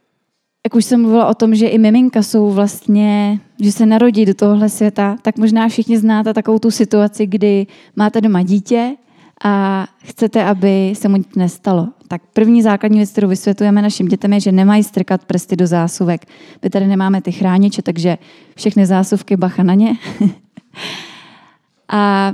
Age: 20-39